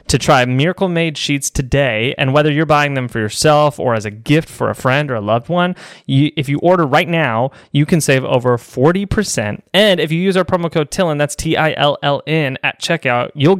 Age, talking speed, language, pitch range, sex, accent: 20-39, 205 wpm, English, 120-155 Hz, male, American